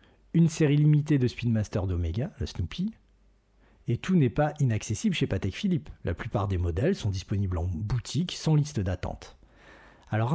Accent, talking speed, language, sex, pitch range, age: French, 160 wpm, French, male, 95-145 Hz, 50-69